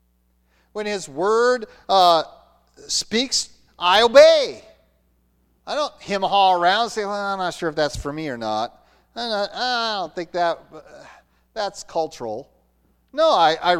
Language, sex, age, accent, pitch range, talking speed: English, male, 40-59, American, 135-200 Hz, 145 wpm